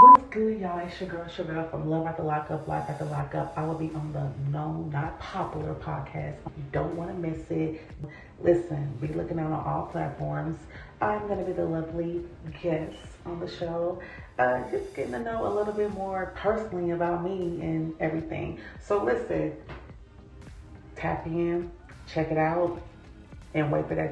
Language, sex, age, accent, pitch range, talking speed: English, female, 30-49, American, 125-165 Hz, 185 wpm